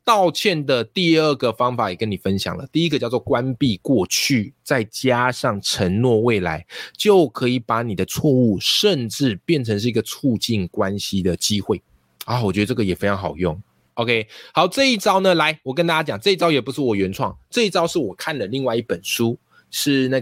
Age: 20-39